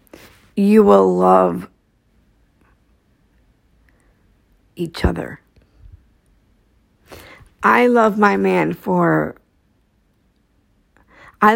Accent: American